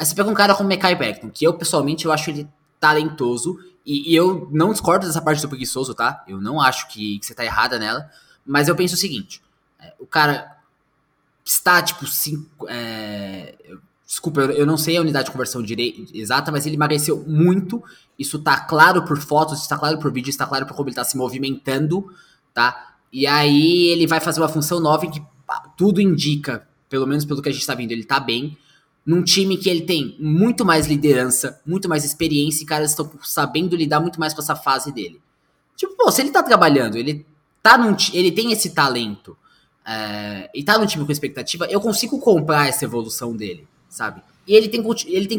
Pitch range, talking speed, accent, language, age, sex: 140-175 Hz, 210 wpm, Brazilian, Portuguese, 20-39, male